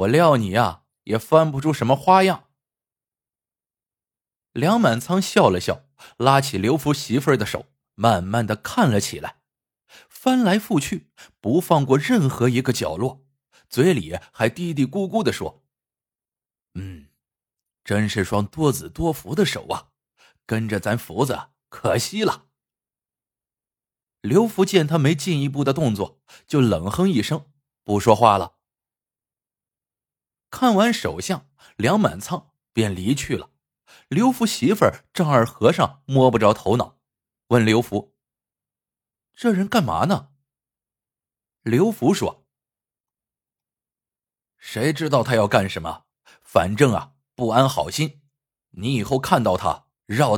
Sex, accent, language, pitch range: male, native, Chinese, 115-165 Hz